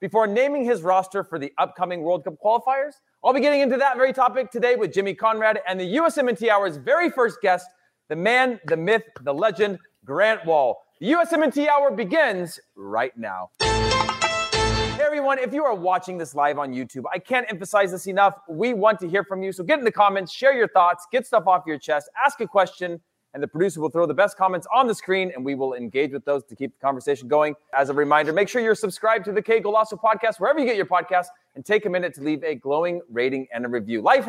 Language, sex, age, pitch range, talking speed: English, male, 30-49, 150-240 Hz, 230 wpm